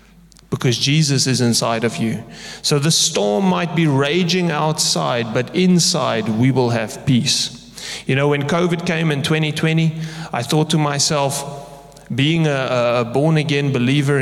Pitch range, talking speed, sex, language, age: 130-160 Hz, 150 wpm, male, English, 30-49